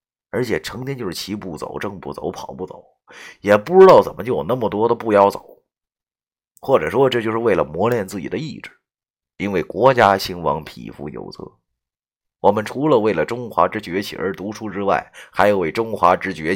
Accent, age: native, 30-49